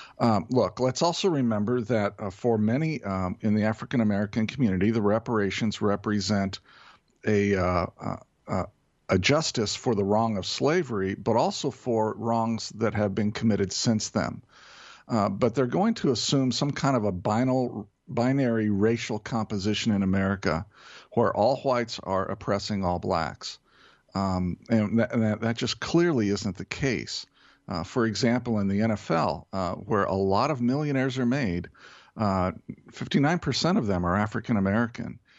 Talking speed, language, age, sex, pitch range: 155 wpm, English, 50-69, male, 100-125 Hz